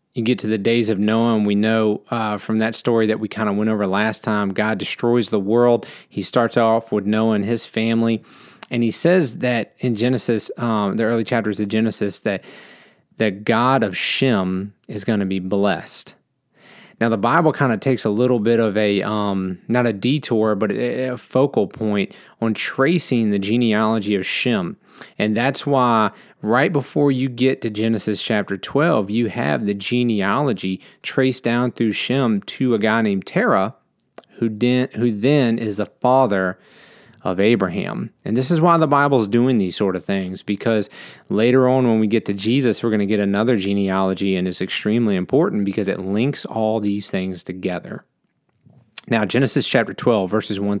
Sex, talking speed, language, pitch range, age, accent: male, 185 wpm, English, 105-120 Hz, 30-49, American